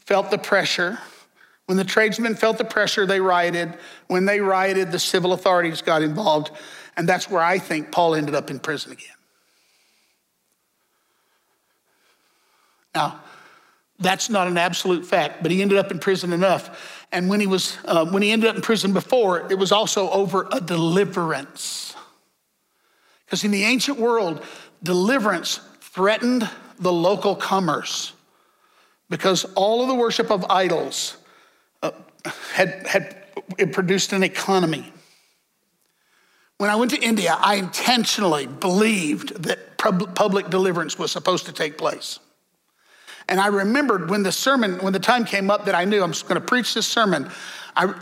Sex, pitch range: male, 180-225 Hz